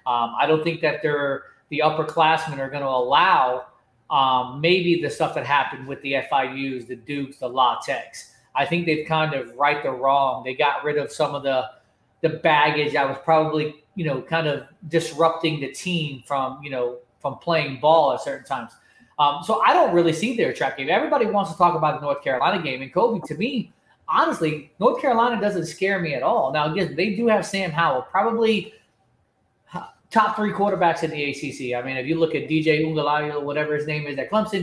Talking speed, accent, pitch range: 210 wpm, American, 145-180 Hz